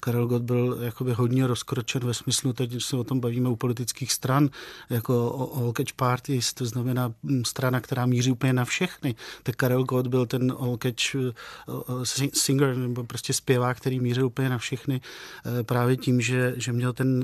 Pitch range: 125-135 Hz